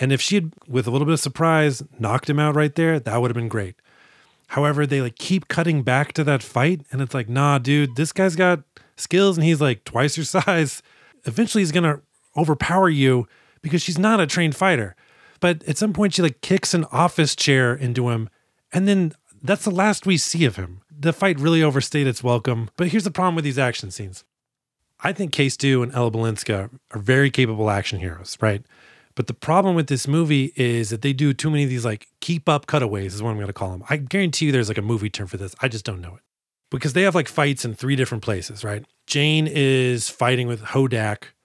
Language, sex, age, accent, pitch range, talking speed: English, male, 30-49, American, 115-160 Hz, 230 wpm